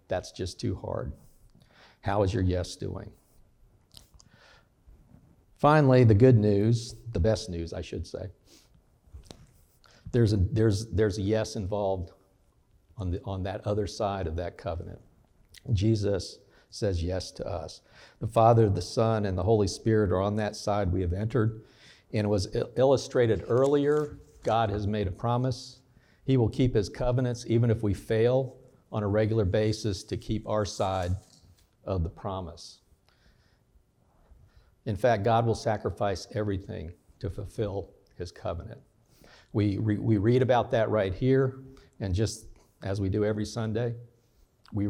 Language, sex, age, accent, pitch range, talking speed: English, male, 60-79, American, 95-115 Hz, 145 wpm